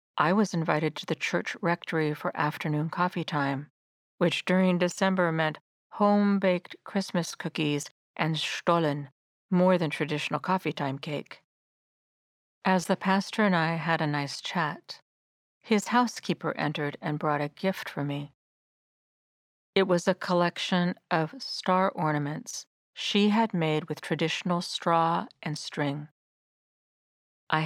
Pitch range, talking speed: 155-190 Hz, 130 wpm